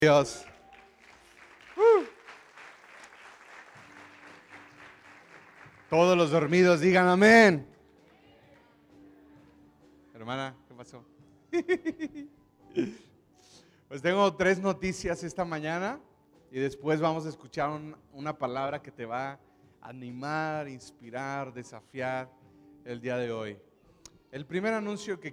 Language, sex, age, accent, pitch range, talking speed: Spanish, male, 30-49, Mexican, 135-170 Hz, 90 wpm